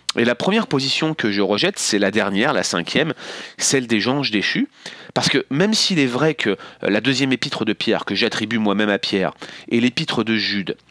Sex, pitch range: male, 110-145 Hz